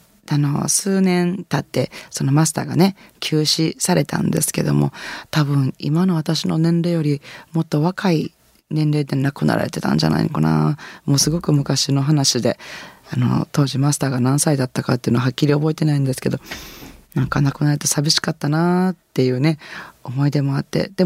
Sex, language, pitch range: female, Japanese, 135-165 Hz